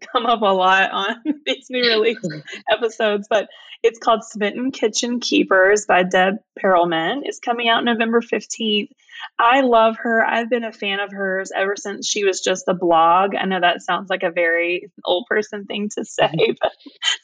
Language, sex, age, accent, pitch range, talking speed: English, female, 20-39, American, 185-240 Hz, 180 wpm